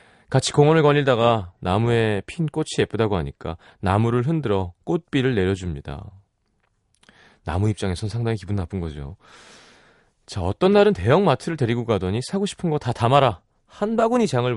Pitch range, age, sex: 100-155 Hz, 30-49, male